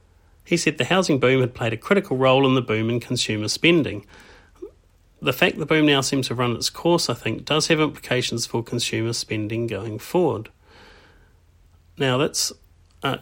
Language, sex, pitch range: English, male, 110-140 Hz